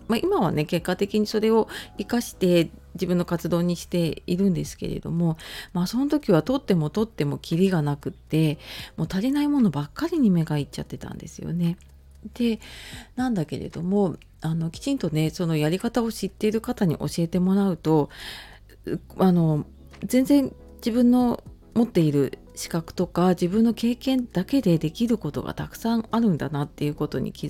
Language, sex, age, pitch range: Japanese, female, 40-59, 150-210 Hz